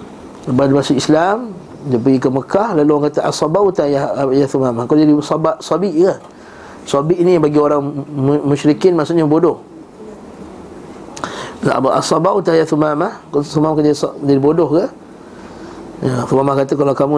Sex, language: male, Malay